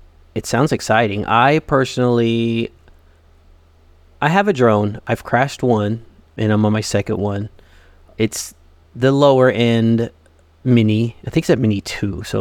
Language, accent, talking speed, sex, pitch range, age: English, American, 140 wpm, male, 95-130 Hz, 30-49